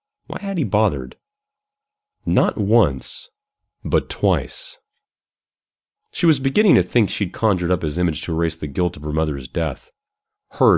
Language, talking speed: English, 150 wpm